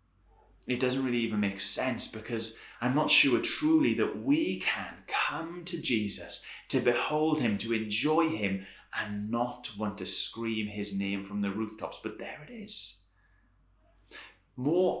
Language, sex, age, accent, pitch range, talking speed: English, male, 30-49, British, 100-135 Hz, 150 wpm